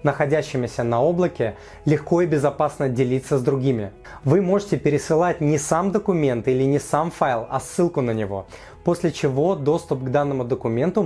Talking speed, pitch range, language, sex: 155 wpm, 135-165 Hz, Russian, male